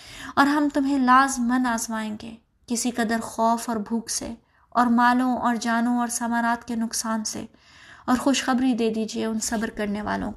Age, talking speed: 20-39, 170 wpm